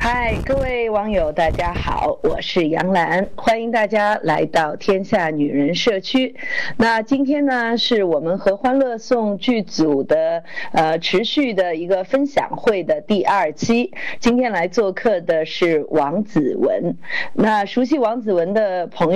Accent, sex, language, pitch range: native, female, Chinese, 170-235 Hz